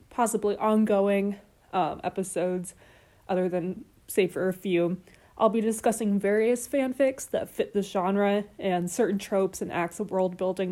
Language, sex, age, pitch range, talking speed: English, female, 20-39, 185-230 Hz, 150 wpm